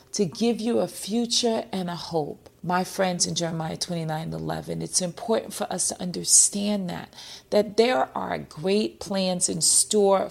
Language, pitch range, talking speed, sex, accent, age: English, 165-215 Hz, 165 wpm, female, American, 40-59